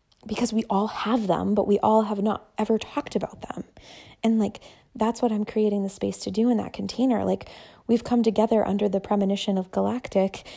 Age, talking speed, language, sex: 20-39, 205 wpm, English, female